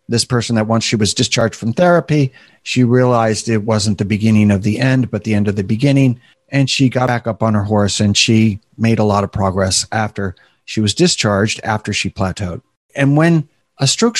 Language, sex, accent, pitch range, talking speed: English, male, American, 110-135 Hz, 210 wpm